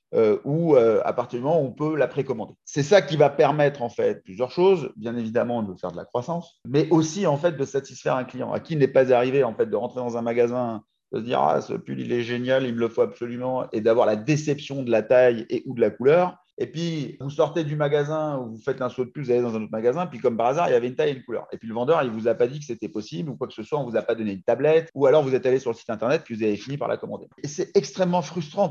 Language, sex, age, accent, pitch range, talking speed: French, male, 30-49, French, 120-165 Hz, 315 wpm